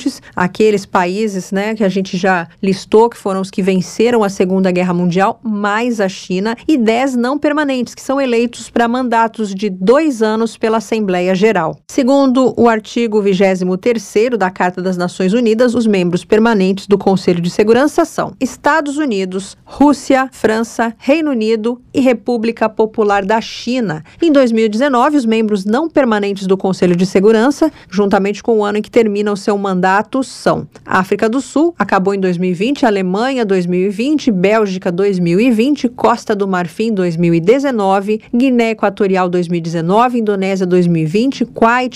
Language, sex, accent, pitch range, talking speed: Portuguese, female, Brazilian, 195-240 Hz, 150 wpm